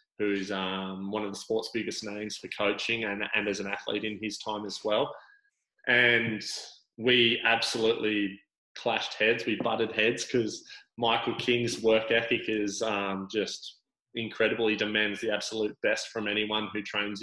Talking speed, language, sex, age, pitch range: 160 wpm, English, male, 20-39, 105-110 Hz